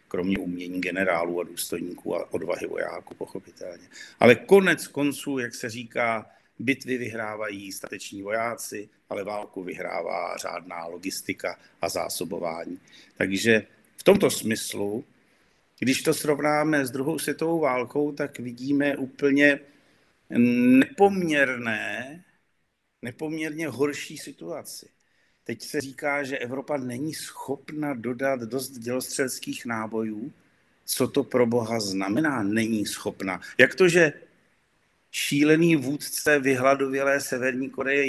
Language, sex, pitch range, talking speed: Slovak, male, 115-150 Hz, 110 wpm